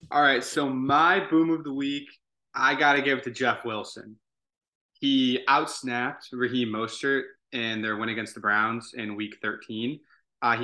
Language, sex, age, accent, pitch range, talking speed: English, male, 20-39, American, 110-125 Hz, 165 wpm